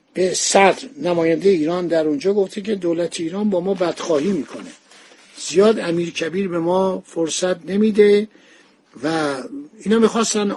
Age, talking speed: 60-79, 130 wpm